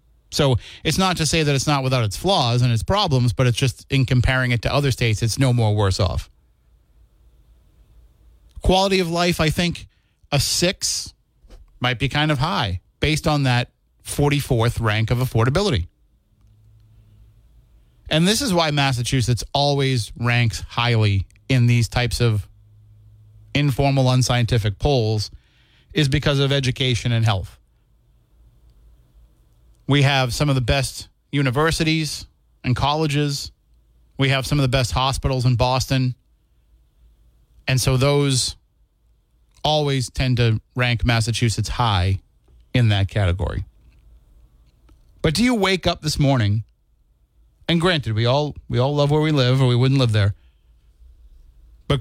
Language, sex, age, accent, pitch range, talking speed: English, male, 30-49, American, 100-140 Hz, 140 wpm